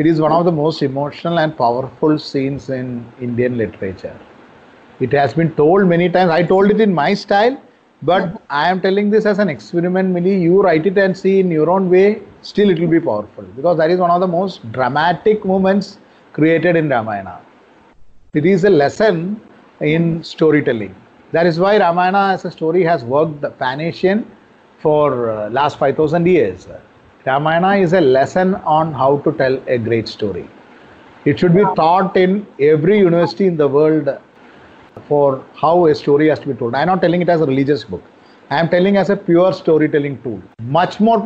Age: 30-49